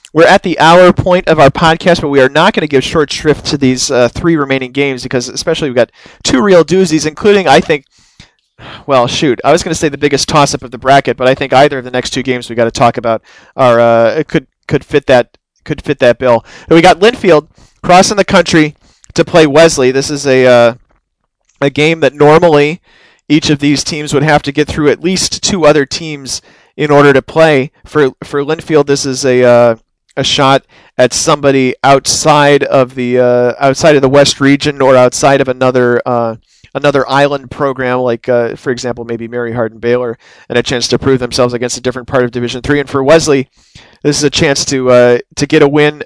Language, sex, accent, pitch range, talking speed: English, male, American, 125-150 Hz, 220 wpm